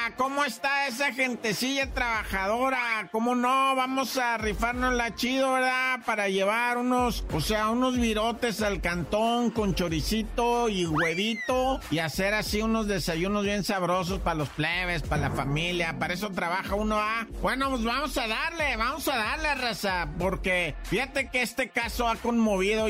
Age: 50-69